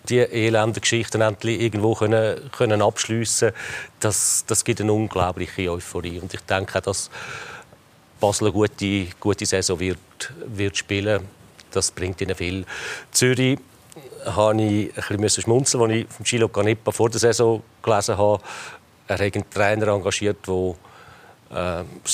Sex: male